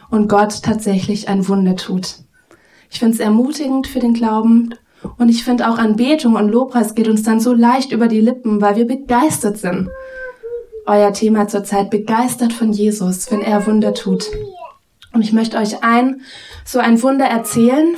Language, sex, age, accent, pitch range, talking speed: German, female, 20-39, German, 205-240 Hz, 170 wpm